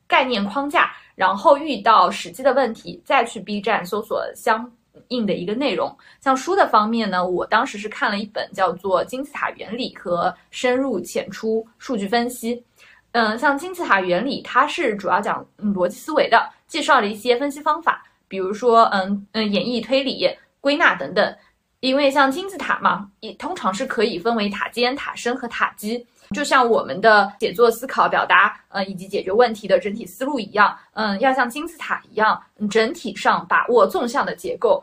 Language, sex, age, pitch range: Chinese, female, 20-39, 205-275 Hz